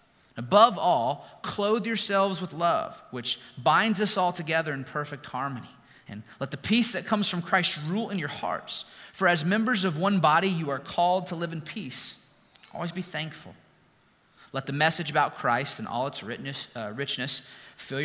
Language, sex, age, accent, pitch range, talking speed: English, male, 30-49, American, 115-175 Hz, 180 wpm